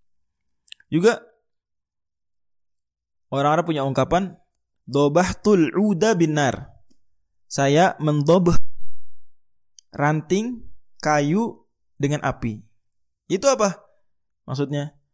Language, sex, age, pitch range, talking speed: Indonesian, male, 20-39, 105-170 Hz, 65 wpm